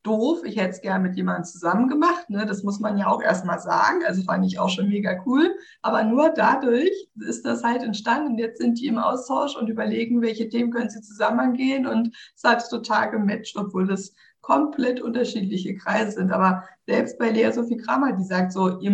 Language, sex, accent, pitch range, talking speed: German, female, German, 185-240 Hz, 200 wpm